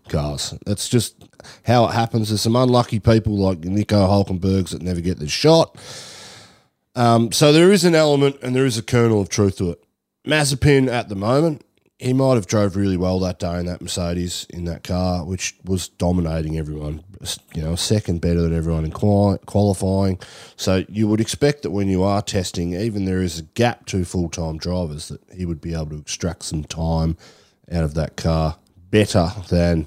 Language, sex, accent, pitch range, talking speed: English, male, Australian, 85-115 Hz, 195 wpm